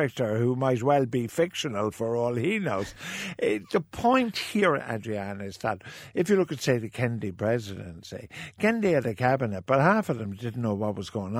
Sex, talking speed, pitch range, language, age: male, 190 wpm, 105-155 Hz, English, 60-79